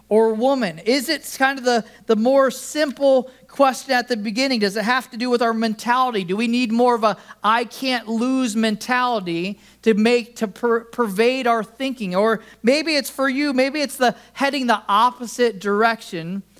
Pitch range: 205-240 Hz